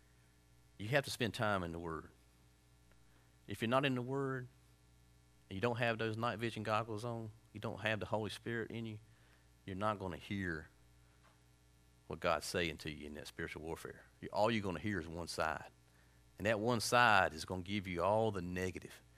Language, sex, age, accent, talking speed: English, male, 40-59, American, 205 wpm